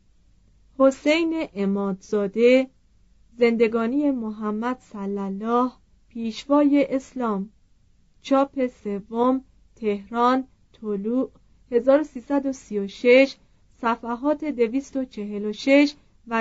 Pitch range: 210-275 Hz